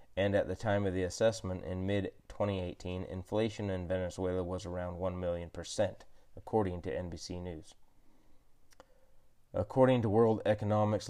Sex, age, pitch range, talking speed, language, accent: male, 30-49, 90-100 Hz, 140 wpm, English, American